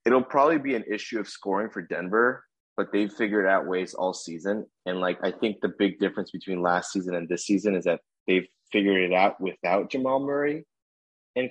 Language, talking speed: English, 205 wpm